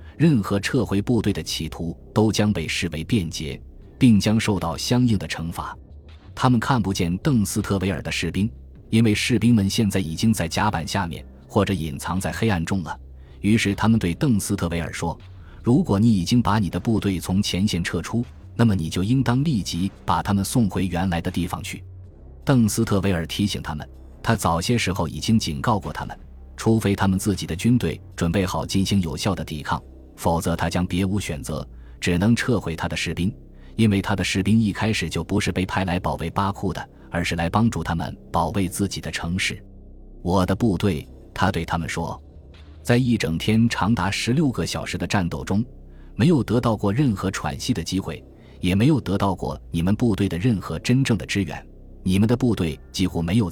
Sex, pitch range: male, 80-105 Hz